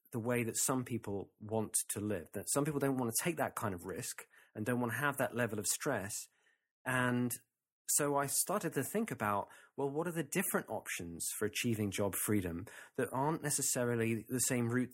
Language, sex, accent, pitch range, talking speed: English, male, British, 110-140 Hz, 205 wpm